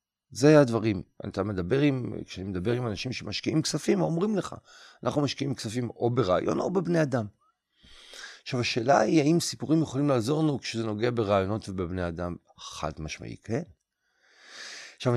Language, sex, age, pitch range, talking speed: Hebrew, male, 50-69, 100-145 Hz, 150 wpm